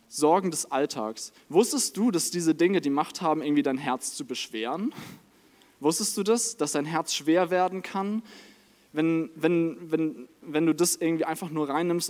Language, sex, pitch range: German, male, 135-175 Hz